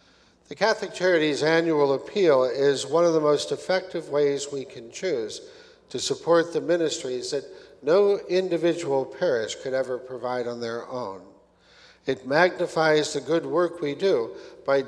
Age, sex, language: 60-79, male, English